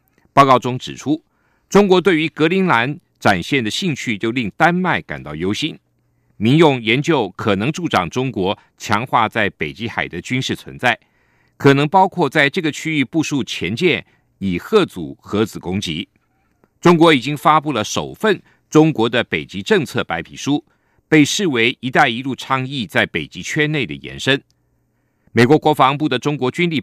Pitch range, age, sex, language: 110-165 Hz, 50-69, male, German